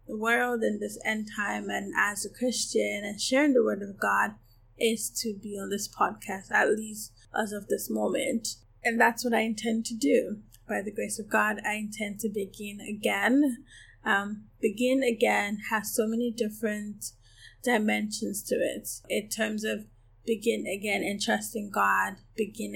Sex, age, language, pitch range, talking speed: female, 10-29, English, 200-230 Hz, 170 wpm